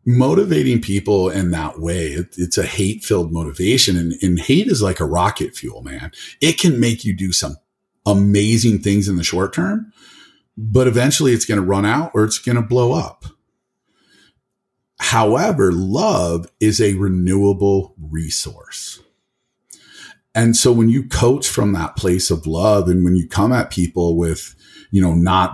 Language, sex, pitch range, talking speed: English, male, 85-115 Hz, 165 wpm